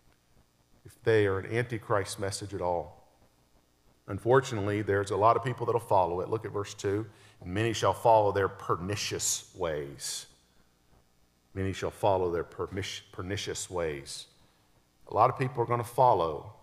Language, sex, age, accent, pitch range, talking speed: English, male, 50-69, American, 95-120 Hz, 150 wpm